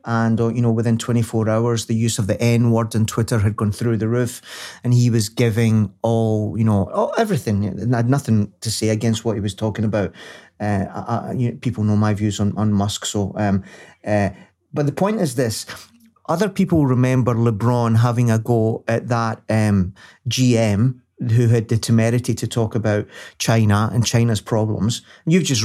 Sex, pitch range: male, 110-135 Hz